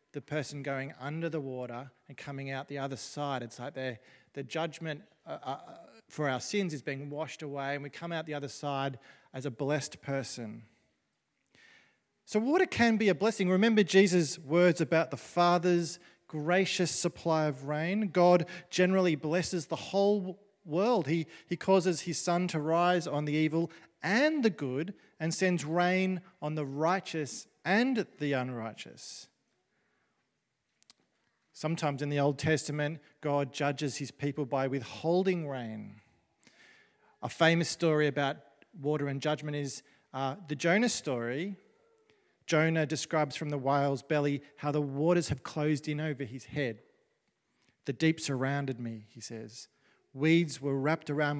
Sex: male